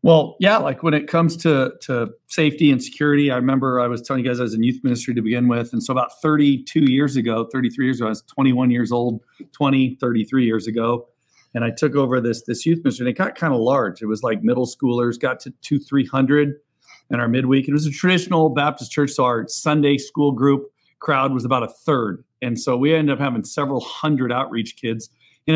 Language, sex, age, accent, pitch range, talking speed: English, male, 40-59, American, 125-150 Hz, 230 wpm